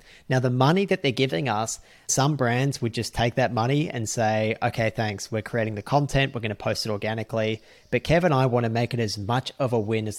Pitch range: 110-135 Hz